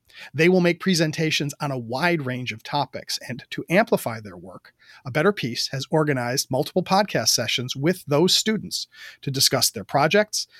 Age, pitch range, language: 40-59, 135-175 Hz, English